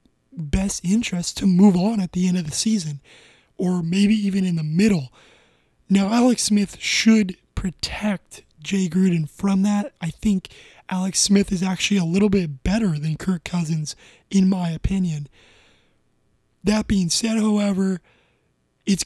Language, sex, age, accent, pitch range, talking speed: English, male, 20-39, American, 170-200 Hz, 150 wpm